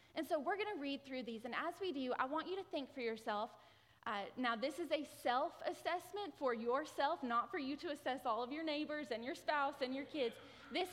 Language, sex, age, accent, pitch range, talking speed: English, female, 20-39, American, 220-320 Hz, 235 wpm